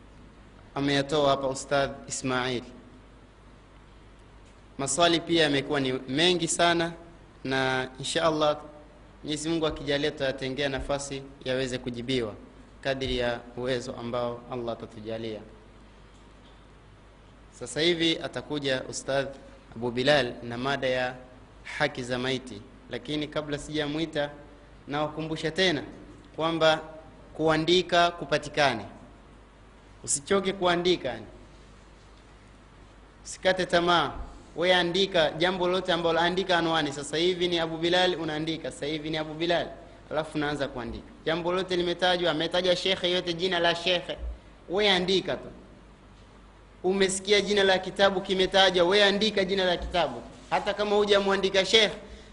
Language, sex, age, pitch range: Swahili, male, 30-49, 125-175 Hz